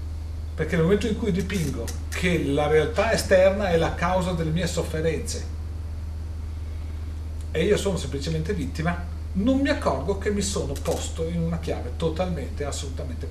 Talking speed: 150 wpm